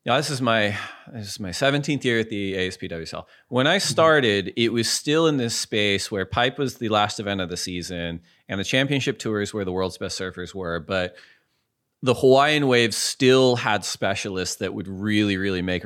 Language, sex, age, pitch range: English, male, 30-49, 95-125 Hz